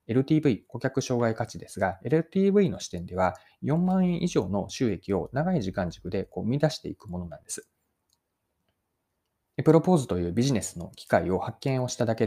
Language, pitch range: Japanese, 95-150 Hz